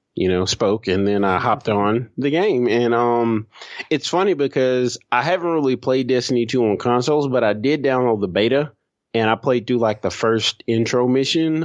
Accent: American